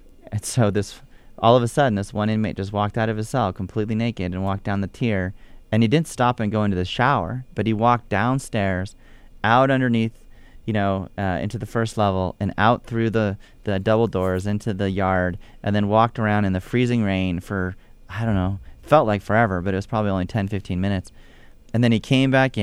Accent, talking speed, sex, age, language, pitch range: American, 220 wpm, male, 30-49, English, 95-110 Hz